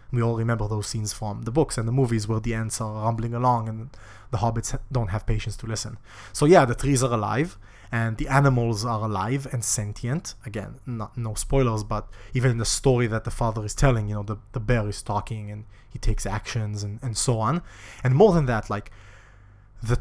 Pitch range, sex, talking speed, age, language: 105-130 Hz, male, 220 wpm, 20-39, English